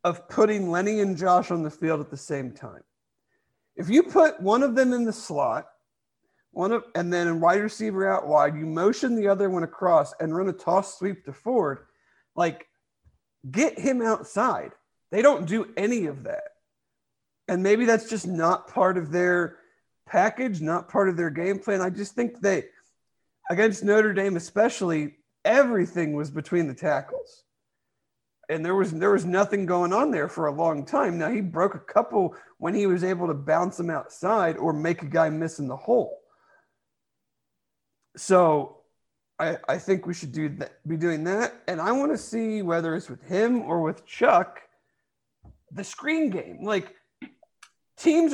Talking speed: 180 wpm